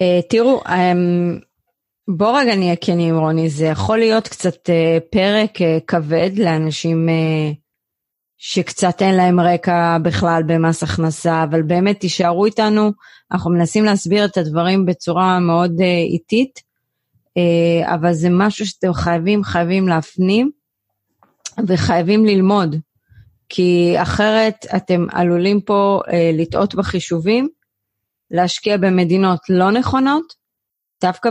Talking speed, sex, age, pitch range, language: 120 wpm, female, 30-49, 170-215 Hz, Hebrew